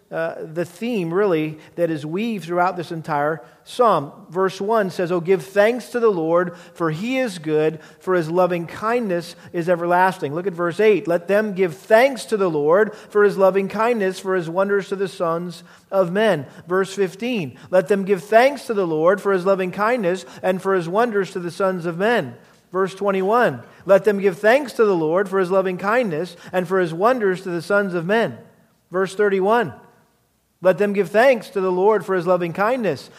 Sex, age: male, 40-59